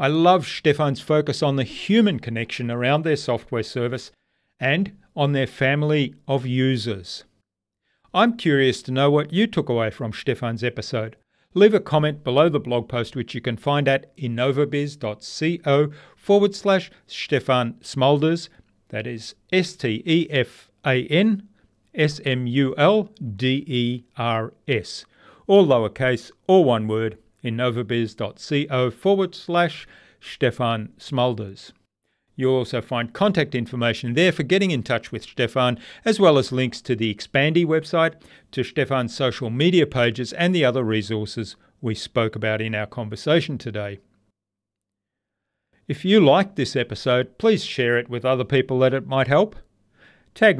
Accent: Australian